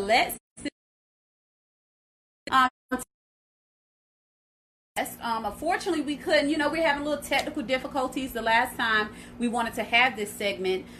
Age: 30-49